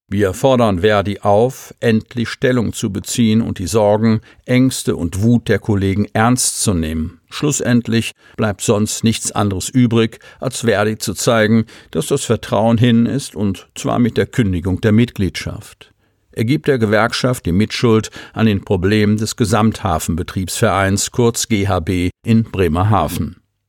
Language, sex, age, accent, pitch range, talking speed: German, male, 50-69, German, 100-120 Hz, 140 wpm